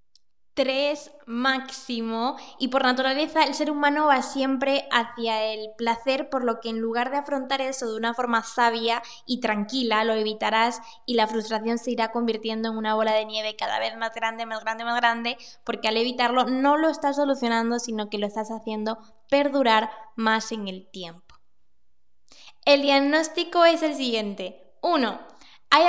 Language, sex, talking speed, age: Spanish, female, 165 wpm, 10-29